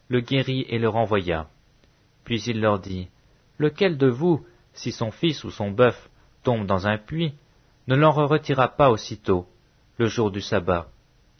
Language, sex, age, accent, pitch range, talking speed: English, male, 40-59, French, 110-140 Hz, 165 wpm